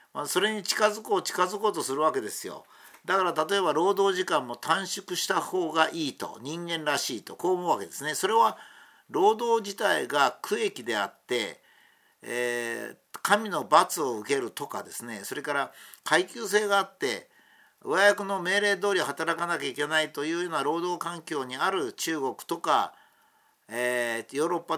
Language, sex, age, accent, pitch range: Japanese, male, 50-69, native, 155-205 Hz